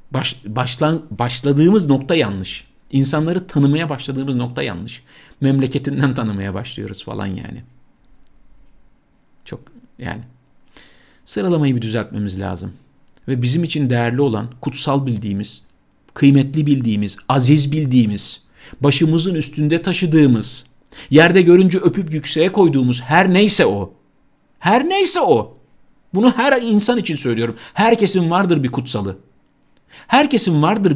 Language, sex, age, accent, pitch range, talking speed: Turkish, male, 50-69, native, 120-170 Hz, 110 wpm